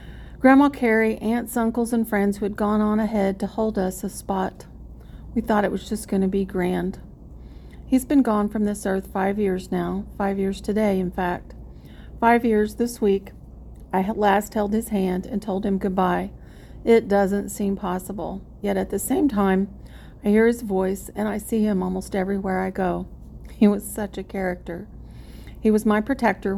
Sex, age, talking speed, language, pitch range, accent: female, 40-59, 185 wpm, English, 190-215 Hz, American